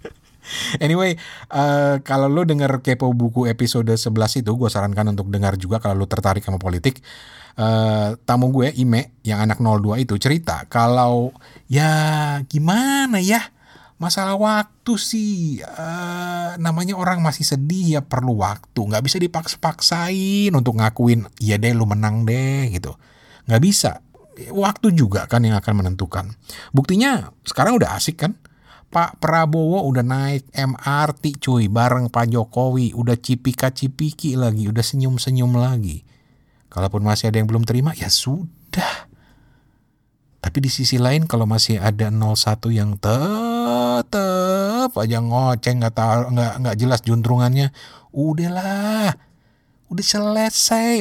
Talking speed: 130 wpm